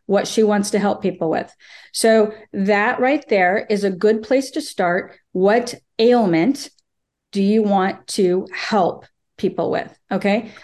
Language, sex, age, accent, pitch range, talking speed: English, female, 40-59, American, 200-225 Hz, 150 wpm